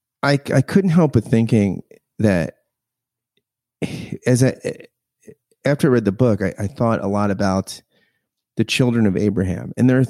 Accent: American